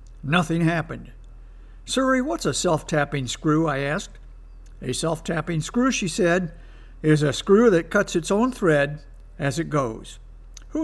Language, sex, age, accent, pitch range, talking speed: English, male, 60-79, American, 135-195 Hz, 145 wpm